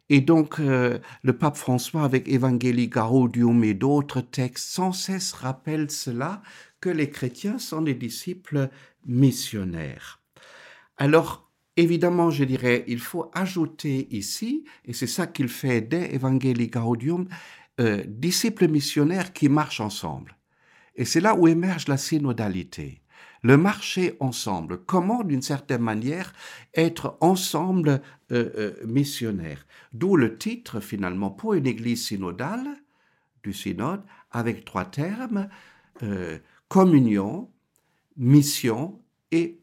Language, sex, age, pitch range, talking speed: French, male, 60-79, 115-165 Hz, 130 wpm